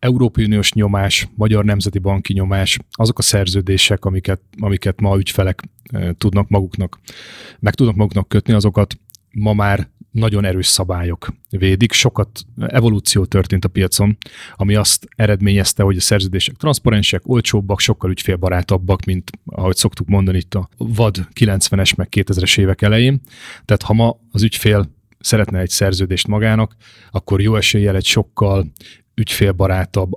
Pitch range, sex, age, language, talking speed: 95-110 Hz, male, 30-49, Hungarian, 140 wpm